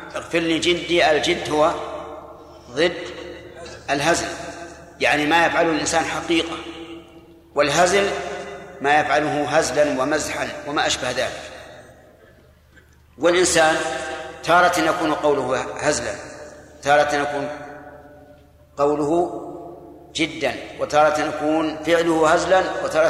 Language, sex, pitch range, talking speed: Arabic, male, 150-170 Hz, 90 wpm